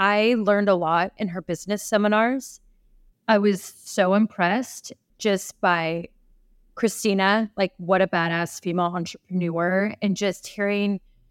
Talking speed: 125 wpm